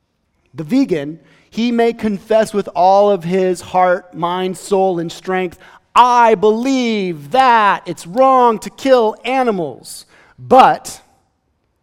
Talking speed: 115 wpm